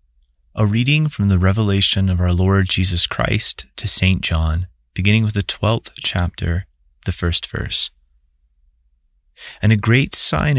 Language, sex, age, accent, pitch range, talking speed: English, male, 30-49, American, 85-105 Hz, 140 wpm